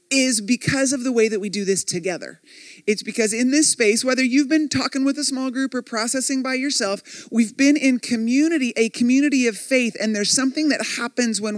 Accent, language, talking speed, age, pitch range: American, English, 210 wpm, 30-49, 215-275 Hz